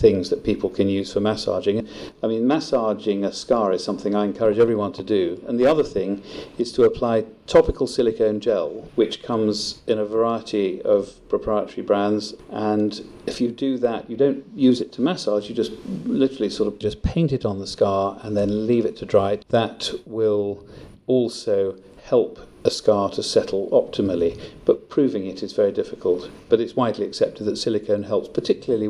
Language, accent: English, British